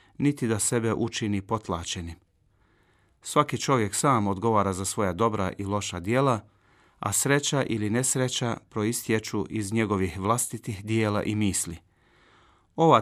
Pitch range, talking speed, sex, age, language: 100-125 Hz, 125 wpm, male, 40-59, Croatian